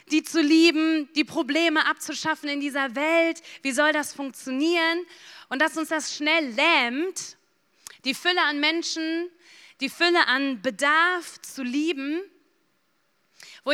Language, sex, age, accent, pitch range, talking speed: German, female, 30-49, German, 270-315 Hz, 130 wpm